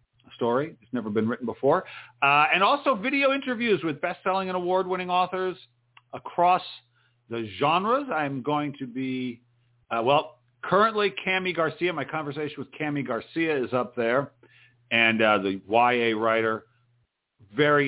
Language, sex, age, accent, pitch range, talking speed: English, male, 50-69, American, 120-180 Hz, 140 wpm